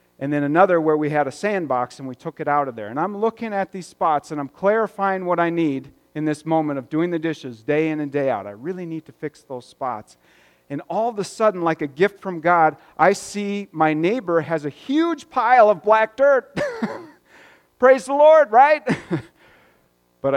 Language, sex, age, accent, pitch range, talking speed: English, male, 40-59, American, 135-200 Hz, 210 wpm